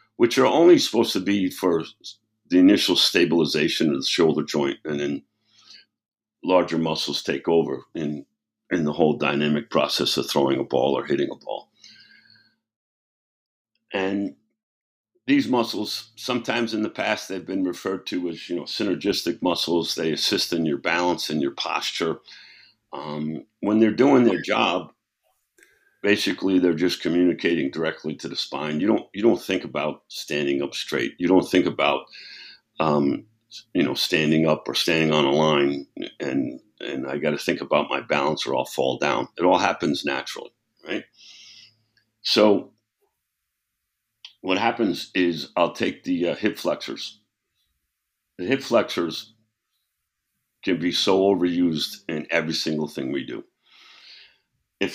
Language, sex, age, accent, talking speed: English, male, 60-79, American, 150 wpm